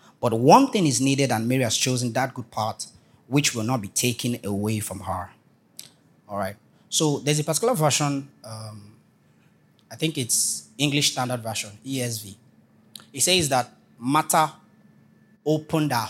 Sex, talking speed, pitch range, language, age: male, 155 wpm, 115-145 Hz, English, 30-49